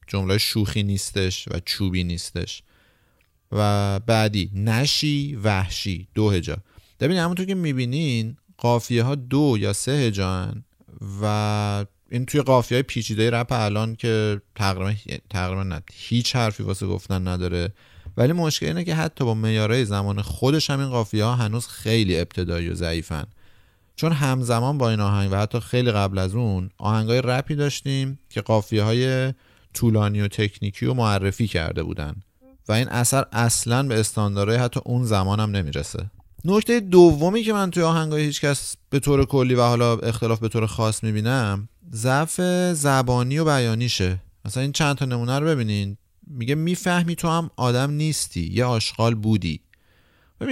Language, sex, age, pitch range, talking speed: Persian, male, 30-49, 100-135 Hz, 155 wpm